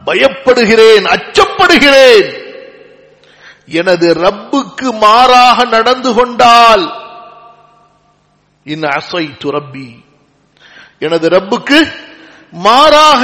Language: Tamil